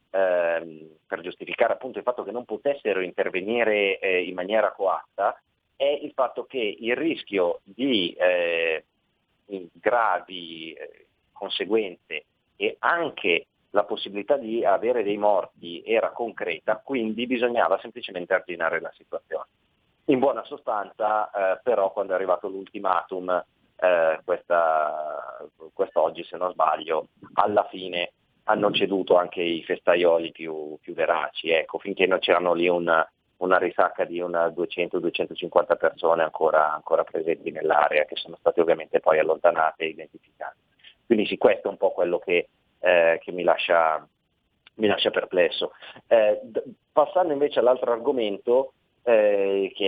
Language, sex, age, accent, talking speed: Italian, male, 30-49, native, 135 wpm